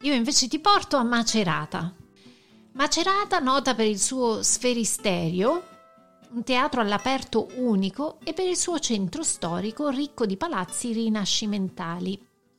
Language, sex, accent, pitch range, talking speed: Italian, female, native, 185-245 Hz, 125 wpm